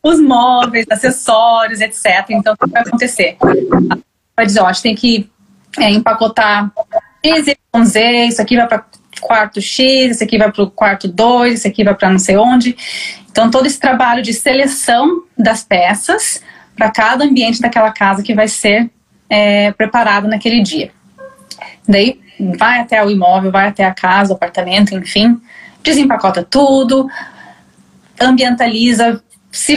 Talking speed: 155 wpm